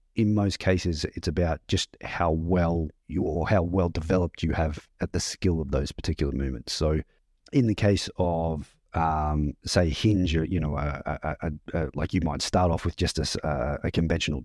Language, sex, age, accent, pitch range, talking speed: English, male, 40-59, Australian, 75-95 Hz, 175 wpm